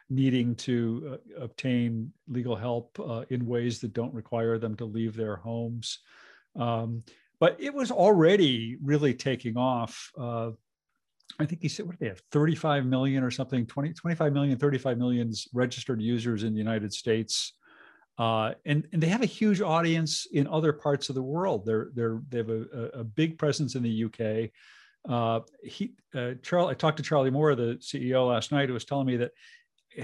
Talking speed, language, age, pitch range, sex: 190 wpm, English, 50-69, 115-145 Hz, male